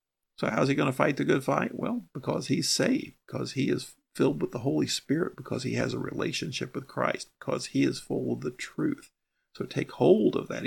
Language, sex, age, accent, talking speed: English, male, 50-69, American, 225 wpm